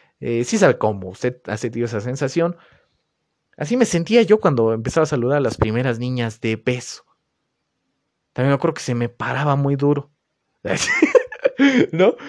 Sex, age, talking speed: male, 30-49, 155 wpm